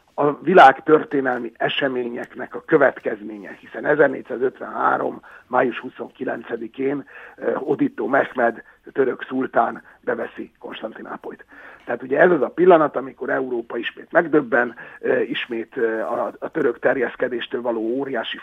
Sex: male